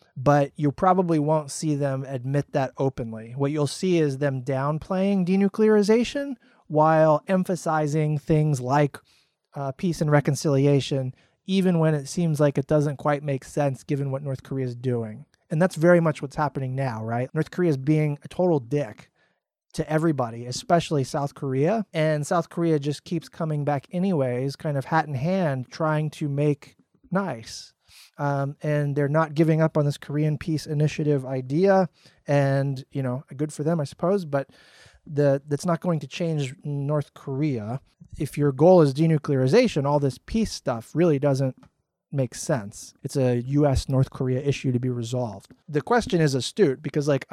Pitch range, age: 135-165 Hz, 30-49